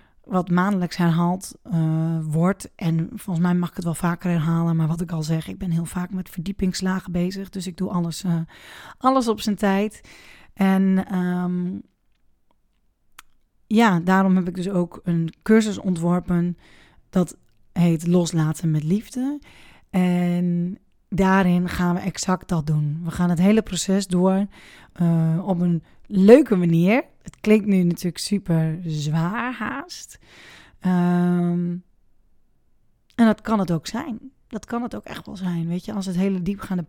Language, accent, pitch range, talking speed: Dutch, Dutch, 175-200 Hz, 155 wpm